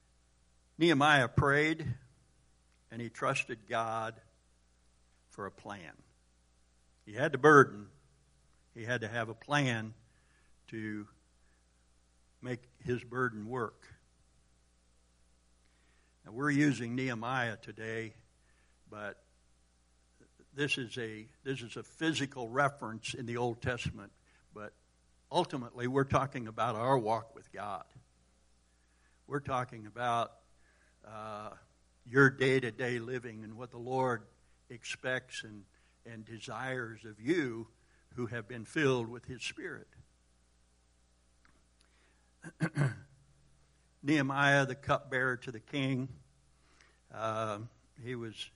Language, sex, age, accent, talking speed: English, male, 60-79, American, 105 wpm